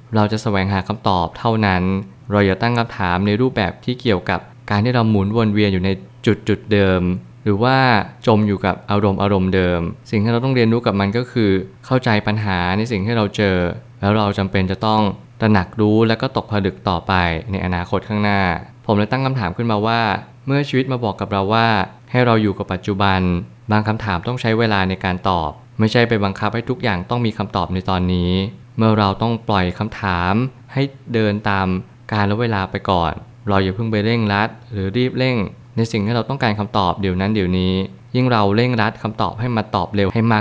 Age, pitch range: 20-39, 95-120 Hz